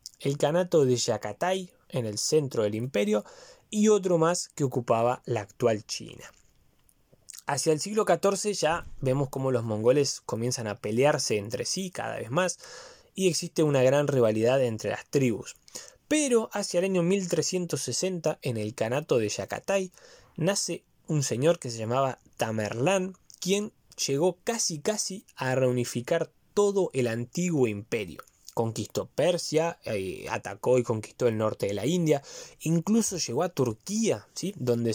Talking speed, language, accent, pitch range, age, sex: 150 wpm, Spanish, Argentinian, 120-180 Hz, 20-39, male